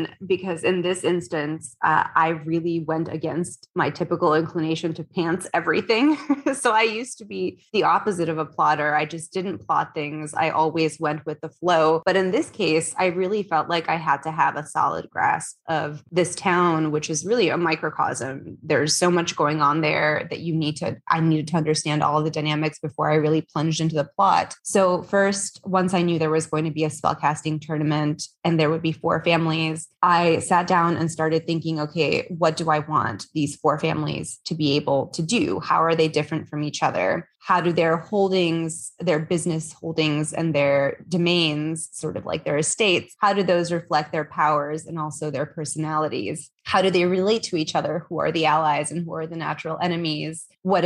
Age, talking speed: 20-39, 200 wpm